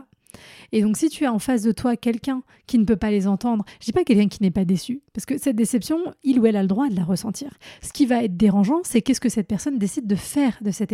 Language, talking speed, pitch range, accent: French, 290 wpm, 200-255 Hz, French